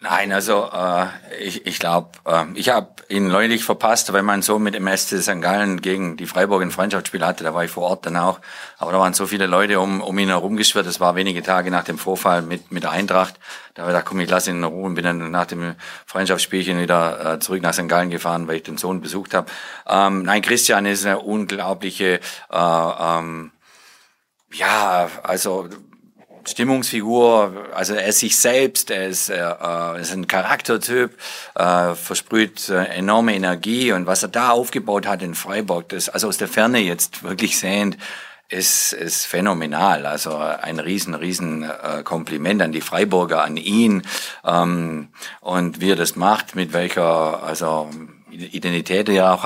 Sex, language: male, German